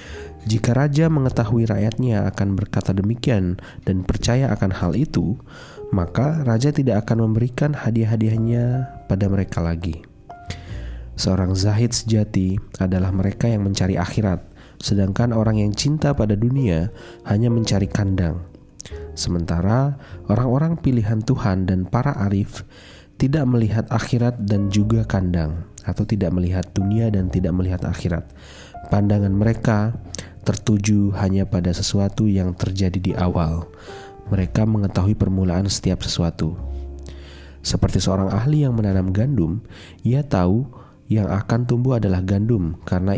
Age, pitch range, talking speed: 20-39, 90-115 Hz, 120 wpm